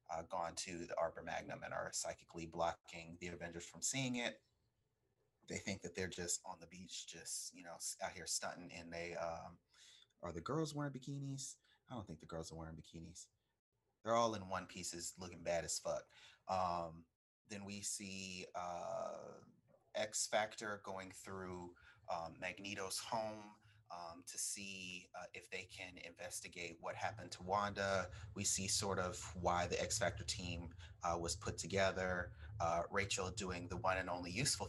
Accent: American